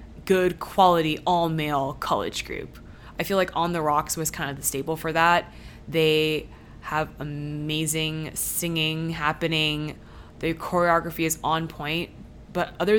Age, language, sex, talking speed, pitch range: 20-39, English, female, 140 wpm, 150-175 Hz